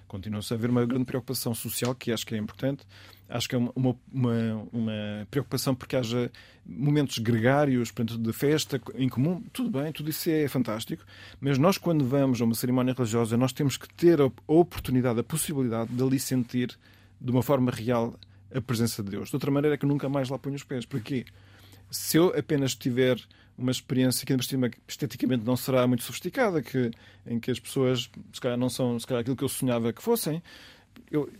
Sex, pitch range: male, 110-135 Hz